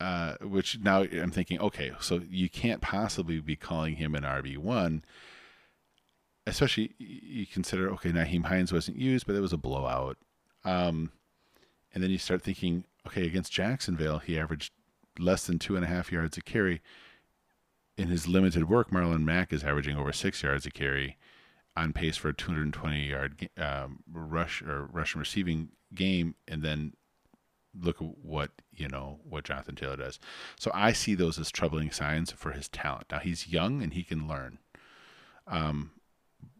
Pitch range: 75-90 Hz